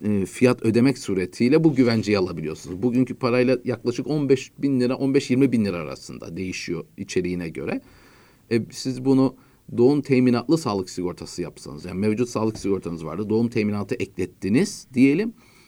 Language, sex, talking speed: Turkish, male, 140 wpm